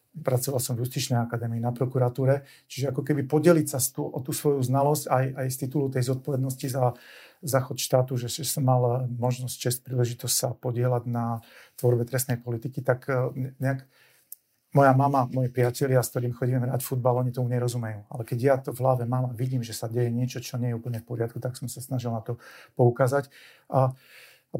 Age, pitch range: 40-59, 125-135 Hz